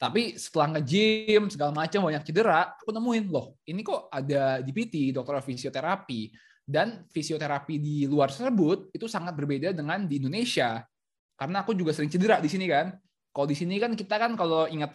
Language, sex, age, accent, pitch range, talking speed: Indonesian, male, 20-39, native, 145-205 Hz, 175 wpm